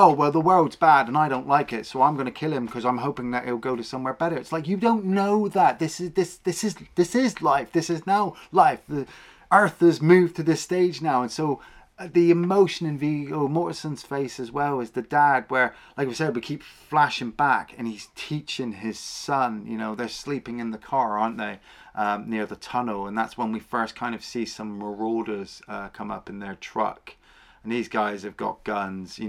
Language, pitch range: English, 115-160 Hz